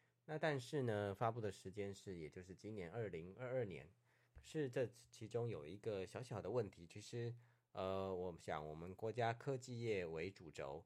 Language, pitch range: Chinese, 90-120 Hz